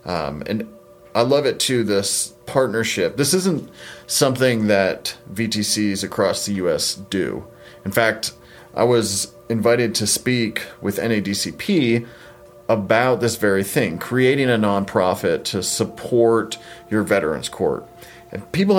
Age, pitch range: 30-49, 105-125 Hz